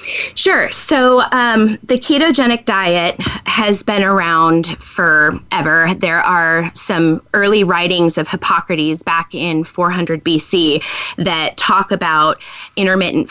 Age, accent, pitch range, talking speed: 20-39, American, 170-220 Hz, 115 wpm